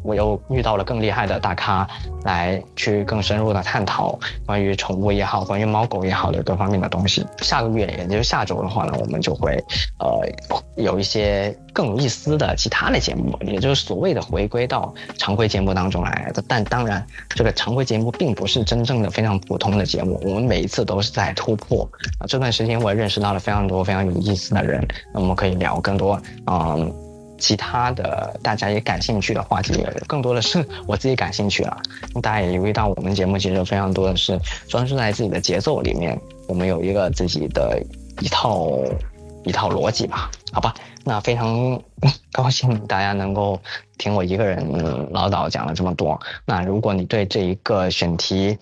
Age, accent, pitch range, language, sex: 20-39, native, 95-115 Hz, Chinese, male